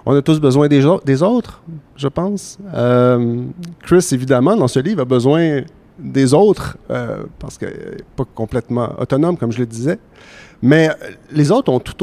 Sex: male